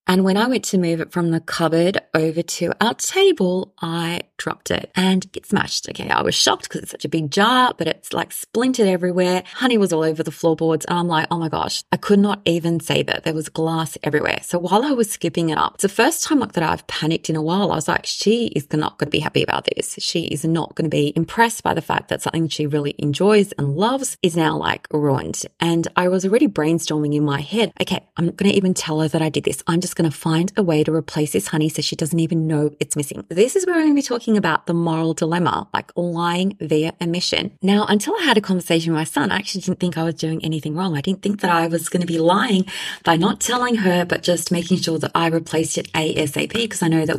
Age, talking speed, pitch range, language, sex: 20-39, 260 wpm, 160-200 Hz, English, female